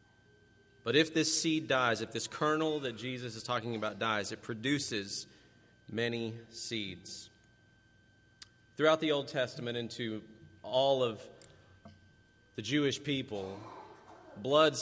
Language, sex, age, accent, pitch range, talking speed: English, male, 40-59, American, 105-125 Hz, 120 wpm